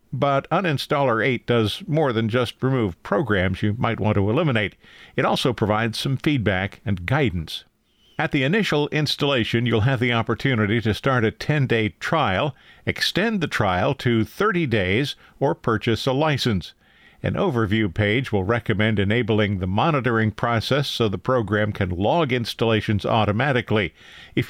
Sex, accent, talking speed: male, American, 150 wpm